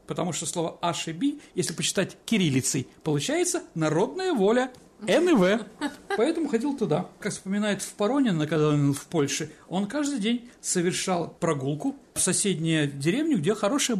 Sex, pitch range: male, 155-225 Hz